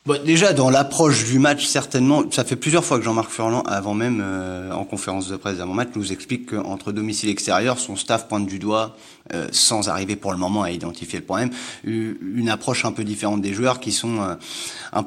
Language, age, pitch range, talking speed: French, 30-49, 105-130 Hz, 220 wpm